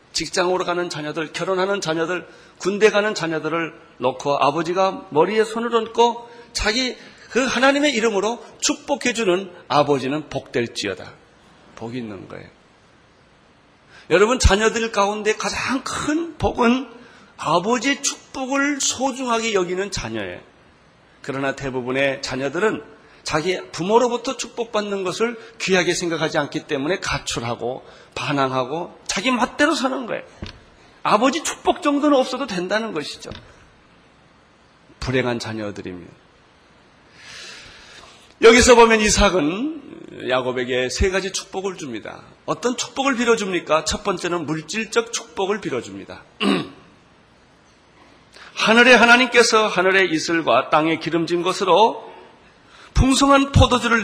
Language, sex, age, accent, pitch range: Korean, male, 40-59, native, 155-235 Hz